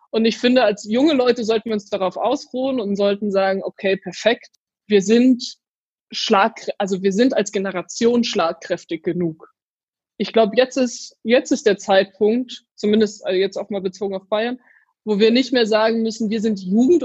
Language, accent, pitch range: German, German, 195-225 Hz